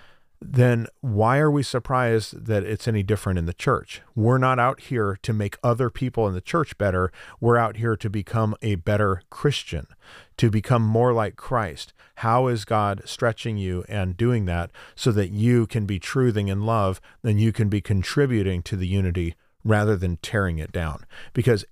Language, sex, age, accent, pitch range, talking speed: English, male, 40-59, American, 100-120 Hz, 185 wpm